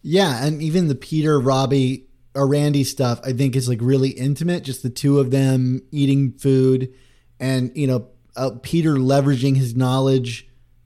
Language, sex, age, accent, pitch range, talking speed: English, male, 20-39, American, 120-140 Hz, 165 wpm